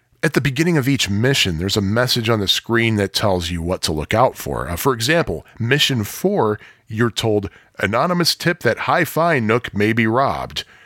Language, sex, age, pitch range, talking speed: English, male, 40-59, 95-120 Hz, 195 wpm